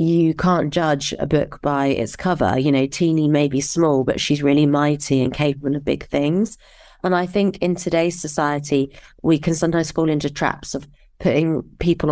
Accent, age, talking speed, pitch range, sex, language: British, 30-49, 190 wpm, 145-165 Hz, female, English